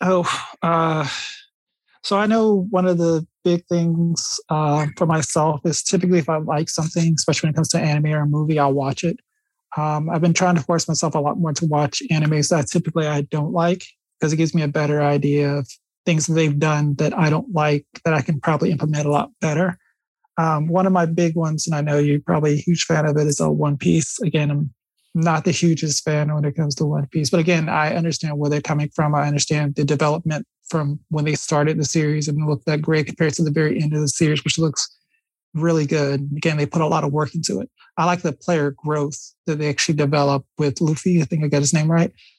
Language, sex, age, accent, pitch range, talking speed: English, male, 20-39, American, 150-170 Hz, 235 wpm